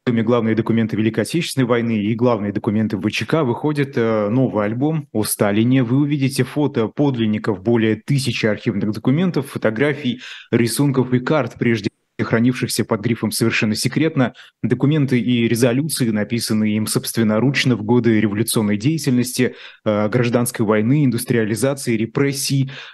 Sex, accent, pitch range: male, native, 110-130 Hz